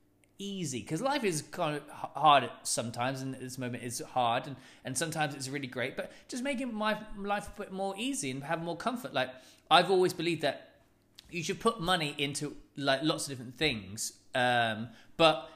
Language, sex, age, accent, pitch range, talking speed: English, male, 20-39, British, 135-190 Hz, 195 wpm